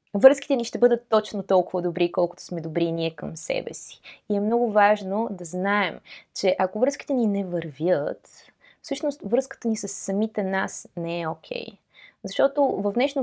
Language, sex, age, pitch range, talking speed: Bulgarian, female, 20-39, 185-235 Hz, 175 wpm